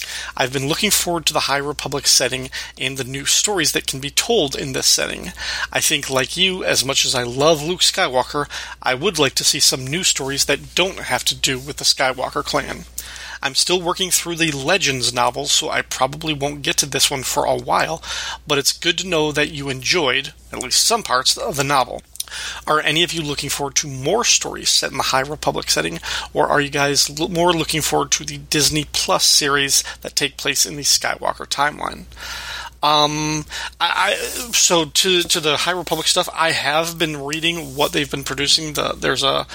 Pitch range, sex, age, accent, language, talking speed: 135-160 Hz, male, 30-49, American, English, 205 wpm